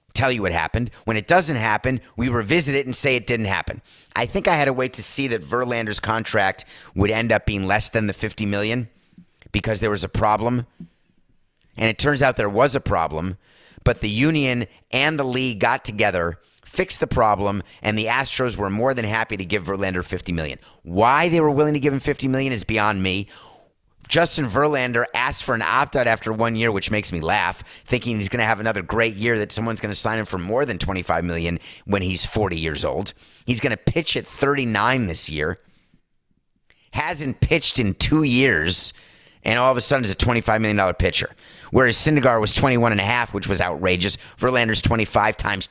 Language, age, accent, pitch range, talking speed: English, 30-49, American, 100-130 Hz, 215 wpm